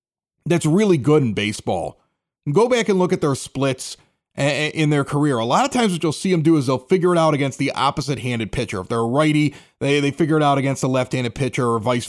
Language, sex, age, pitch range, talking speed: English, male, 30-49, 130-195 Hz, 250 wpm